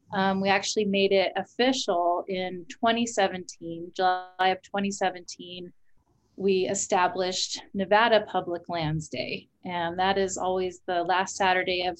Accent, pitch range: American, 185-210 Hz